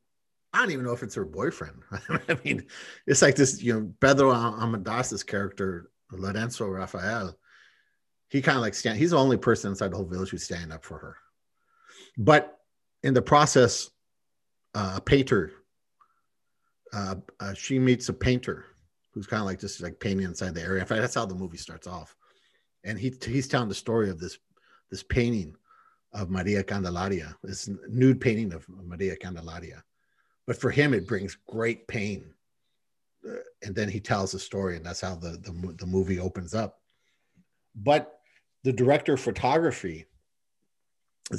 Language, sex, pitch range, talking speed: English, male, 95-130 Hz, 170 wpm